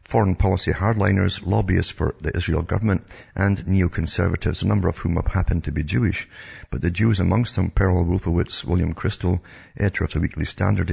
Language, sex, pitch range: English, male, 80-100 Hz